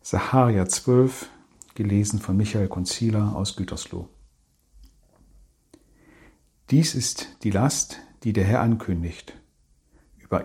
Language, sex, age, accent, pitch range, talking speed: German, male, 50-69, German, 95-120 Hz, 100 wpm